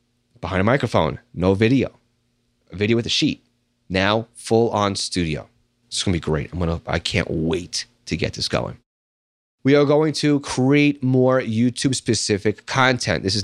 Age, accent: 30-49, American